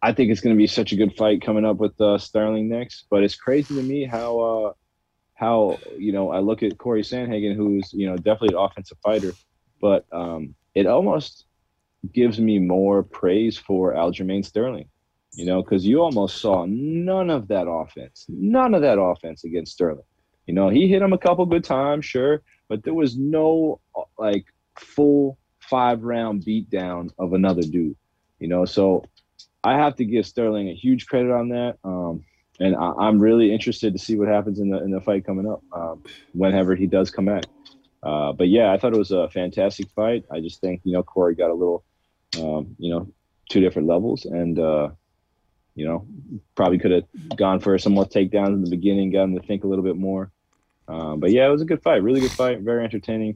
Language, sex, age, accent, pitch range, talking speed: English, male, 30-49, American, 90-115 Hz, 210 wpm